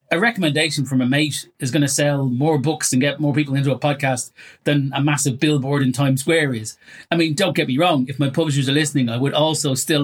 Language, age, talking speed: English, 30-49, 245 wpm